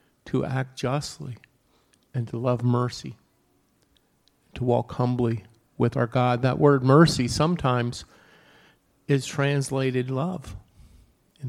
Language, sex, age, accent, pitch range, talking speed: English, male, 50-69, American, 125-145 Hz, 110 wpm